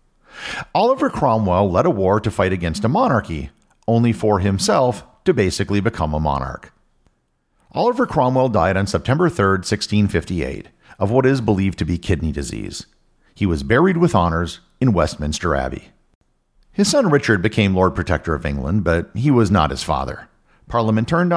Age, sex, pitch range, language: 50-69, male, 85-120 Hz, English